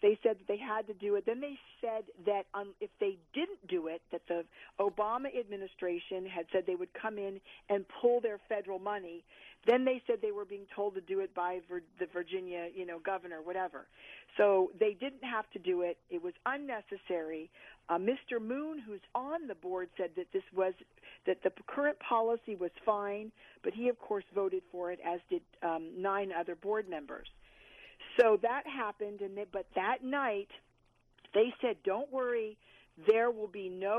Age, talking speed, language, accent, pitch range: 50-69, 190 wpm, English, American, 190-250 Hz